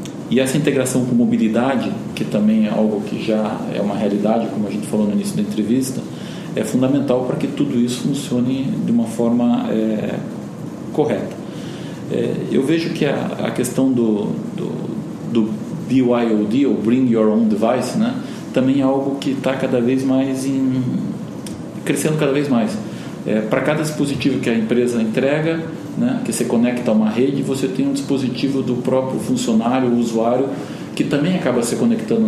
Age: 40-59